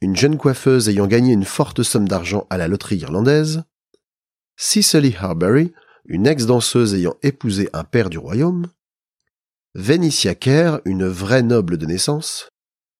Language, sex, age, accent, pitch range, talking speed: French, male, 40-59, French, 100-150 Hz, 140 wpm